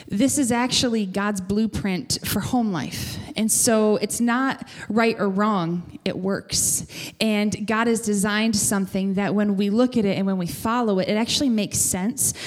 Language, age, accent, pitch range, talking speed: English, 20-39, American, 190-225 Hz, 180 wpm